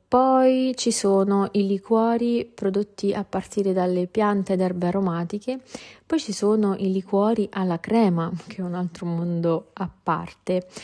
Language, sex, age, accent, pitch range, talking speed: Italian, female, 30-49, native, 175-220 Hz, 150 wpm